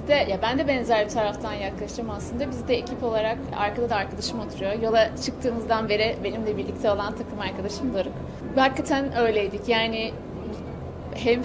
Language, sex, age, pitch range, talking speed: Turkish, female, 30-49, 225-265 Hz, 155 wpm